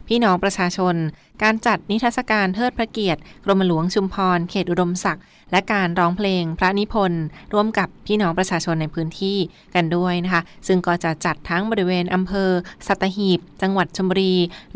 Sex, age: female, 20-39